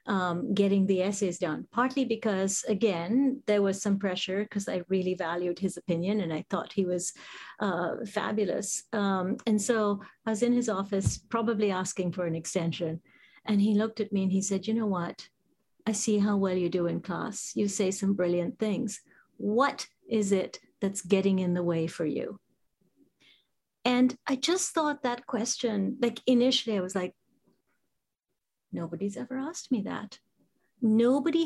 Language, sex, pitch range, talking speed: English, female, 195-270 Hz, 170 wpm